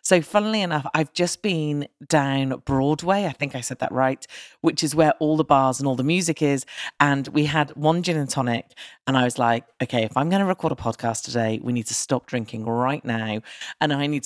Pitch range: 125-160 Hz